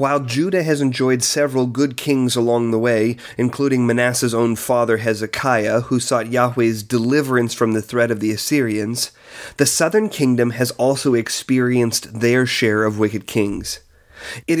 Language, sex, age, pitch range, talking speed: English, male, 30-49, 115-140 Hz, 150 wpm